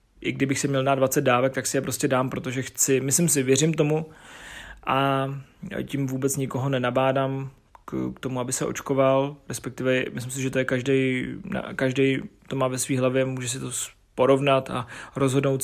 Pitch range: 135-160 Hz